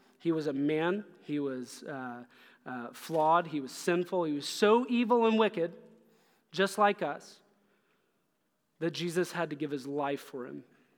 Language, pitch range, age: English, 145-185 Hz, 30-49